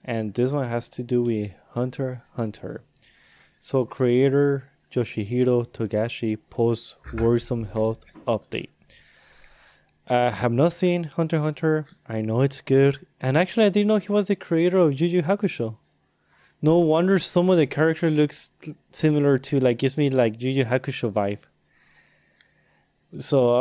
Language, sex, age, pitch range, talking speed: English, male, 20-39, 115-140 Hz, 140 wpm